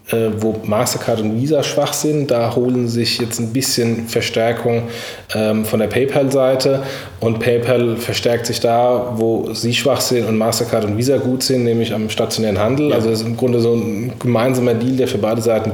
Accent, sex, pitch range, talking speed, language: German, male, 110-125 Hz, 185 wpm, German